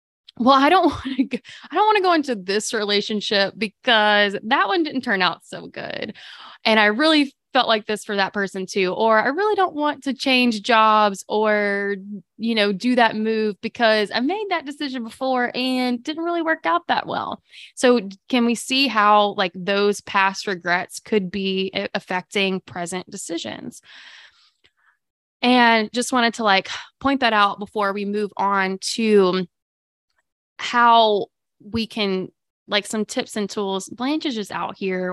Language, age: English, 20-39